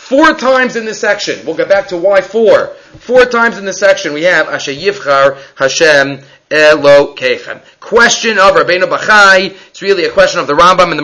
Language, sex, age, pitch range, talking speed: English, male, 30-49, 170-270 Hz, 195 wpm